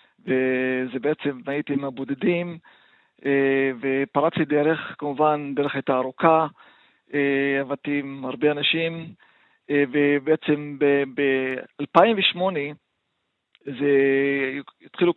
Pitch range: 140-160 Hz